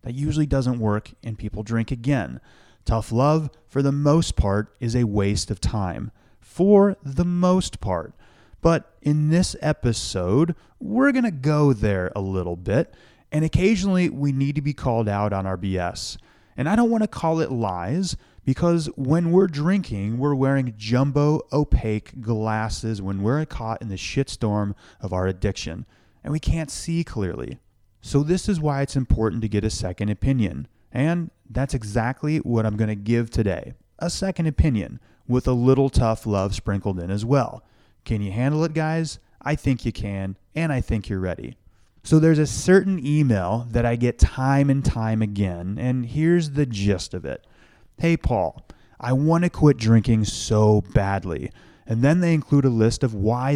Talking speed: 175 wpm